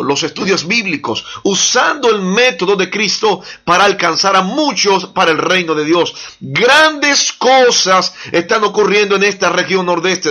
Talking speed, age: 145 wpm, 40-59